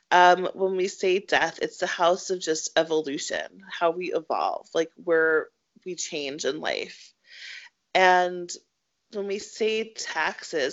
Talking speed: 140 wpm